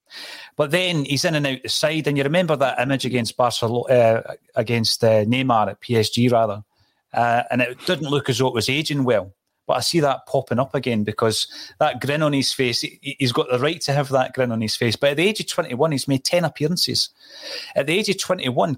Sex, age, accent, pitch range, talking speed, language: male, 30-49, British, 115-145 Hz, 235 wpm, English